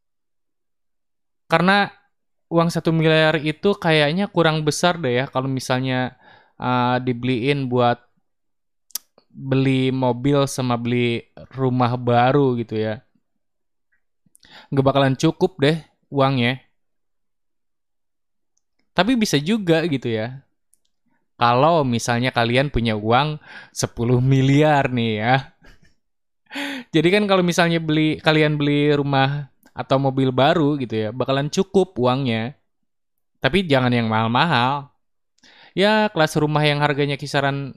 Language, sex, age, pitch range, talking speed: Malay, male, 20-39, 125-155 Hz, 110 wpm